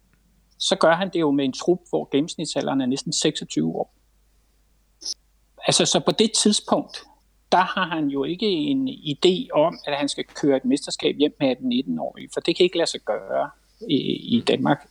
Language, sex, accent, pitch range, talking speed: Danish, male, native, 140-210 Hz, 185 wpm